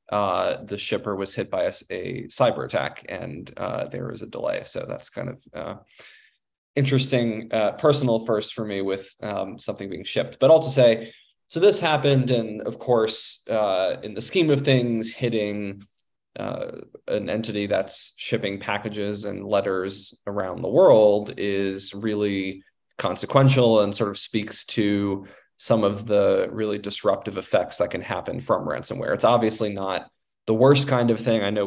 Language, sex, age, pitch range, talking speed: English, male, 20-39, 100-120 Hz, 170 wpm